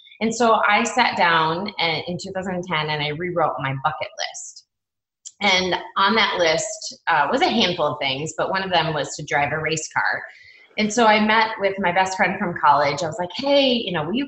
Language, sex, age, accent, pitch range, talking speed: English, female, 20-39, American, 160-245 Hz, 215 wpm